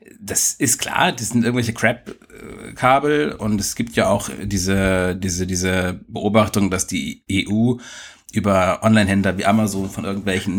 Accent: German